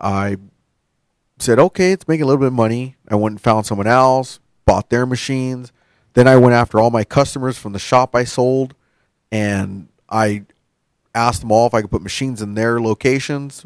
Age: 30-49